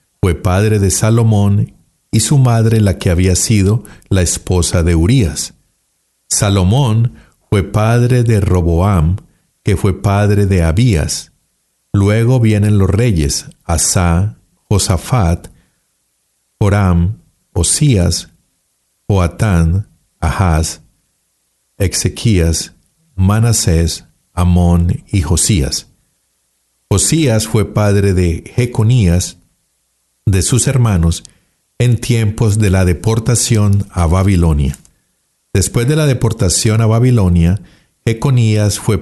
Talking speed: 95 wpm